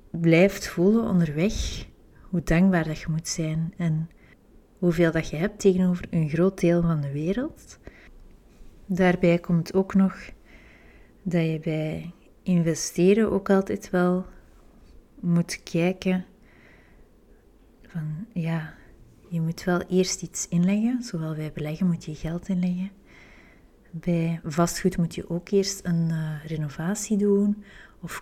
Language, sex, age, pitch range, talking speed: Dutch, female, 30-49, 165-190 Hz, 125 wpm